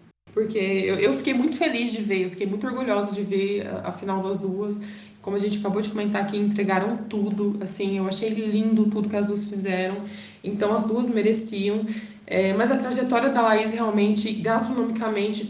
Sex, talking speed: female, 185 wpm